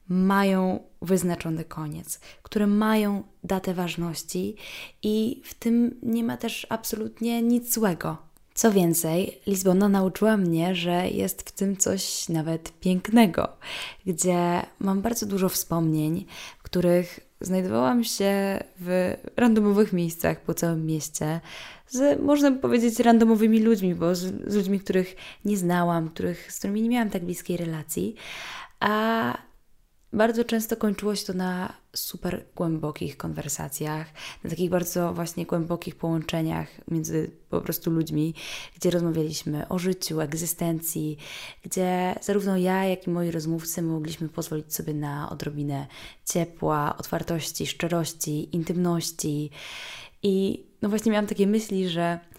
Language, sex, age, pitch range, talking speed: Polish, female, 10-29, 165-205 Hz, 125 wpm